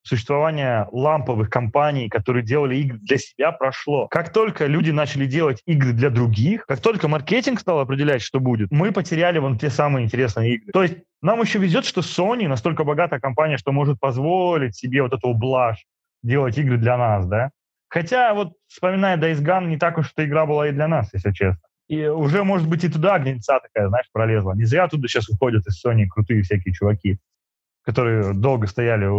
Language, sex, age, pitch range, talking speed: Russian, male, 20-39, 120-160 Hz, 190 wpm